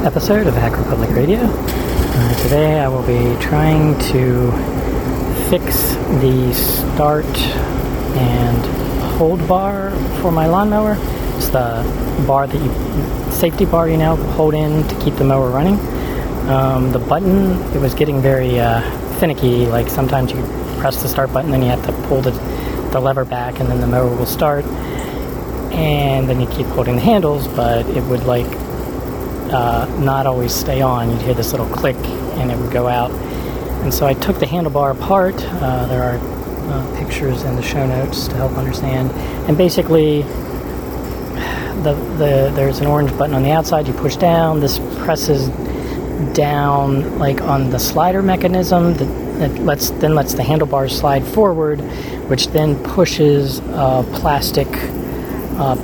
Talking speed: 160 wpm